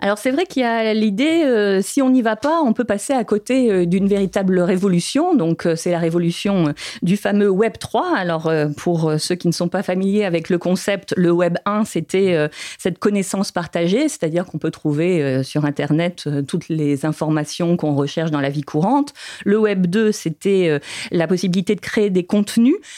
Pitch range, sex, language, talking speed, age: 165-210 Hz, female, French, 210 wpm, 40-59